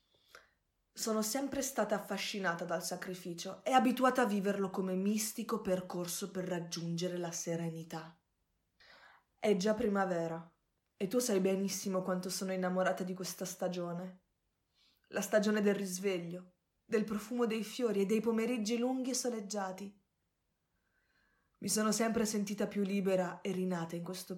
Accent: native